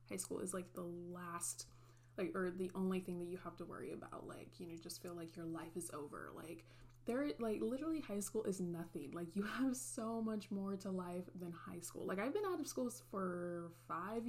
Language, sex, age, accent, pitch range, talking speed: English, female, 20-39, American, 175-225 Hz, 225 wpm